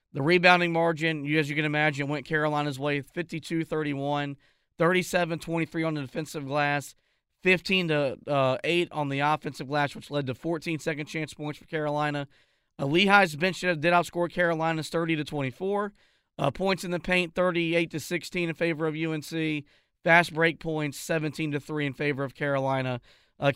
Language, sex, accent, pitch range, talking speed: English, male, American, 145-170 Hz, 140 wpm